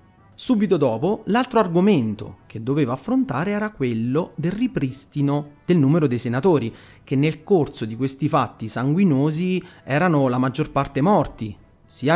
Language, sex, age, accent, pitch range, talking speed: Italian, male, 30-49, native, 125-190 Hz, 140 wpm